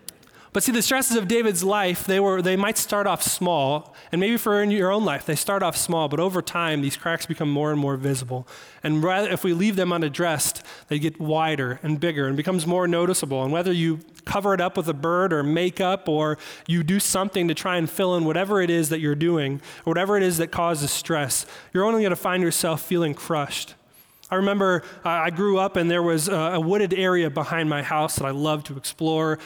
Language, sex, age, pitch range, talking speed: English, male, 20-39, 150-180 Hz, 225 wpm